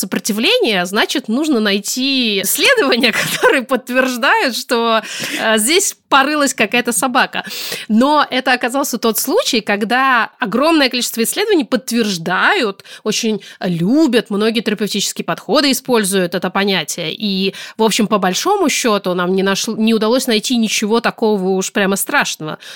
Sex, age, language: female, 30-49, Russian